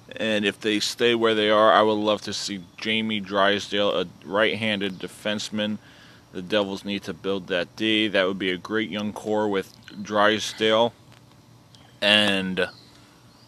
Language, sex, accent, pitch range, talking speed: English, male, American, 100-115 Hz, 150 wpm